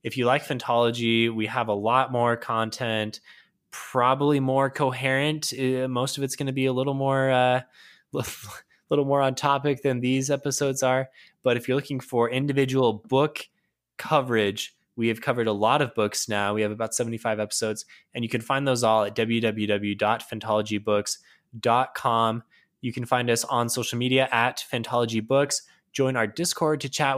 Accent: American